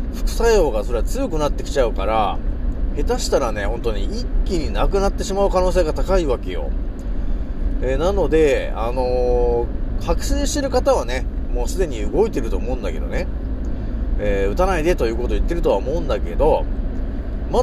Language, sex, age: Japanese, male, 30-49